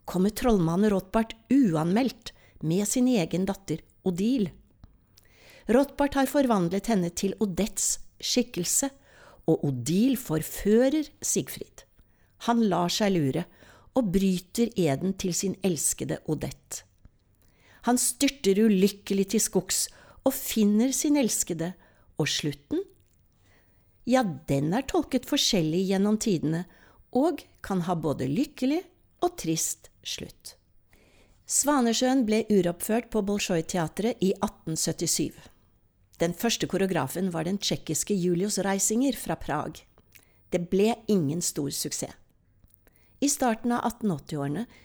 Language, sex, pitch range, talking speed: English, female, 160-230 Hz, 110 wpm